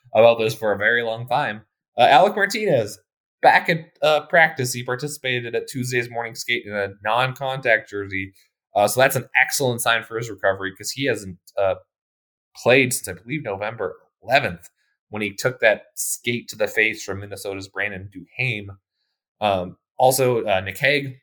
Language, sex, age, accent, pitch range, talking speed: English, male, 20-39, American, 100-125 Hz, 170 wpm